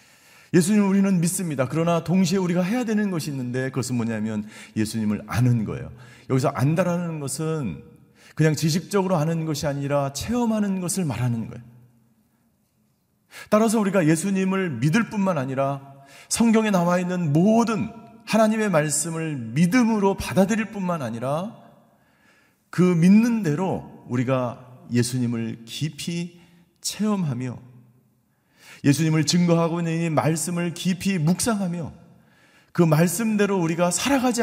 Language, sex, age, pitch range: Korean, male, 40-59, 140-195 Hz